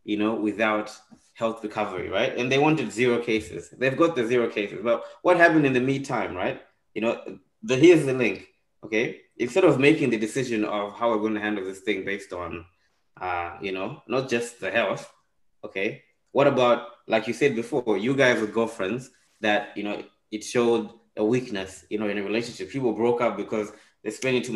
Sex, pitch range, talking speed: male, 105-120 Hz, 200 wpm